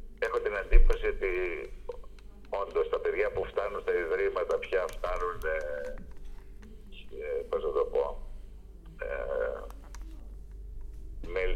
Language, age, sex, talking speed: Greek, 60-79, male, 100 wpm